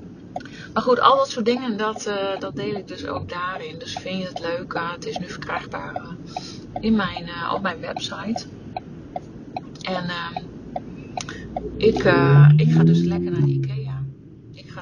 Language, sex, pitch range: Dutch, female, 165-225 Hz